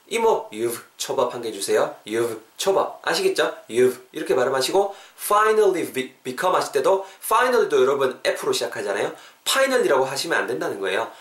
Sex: male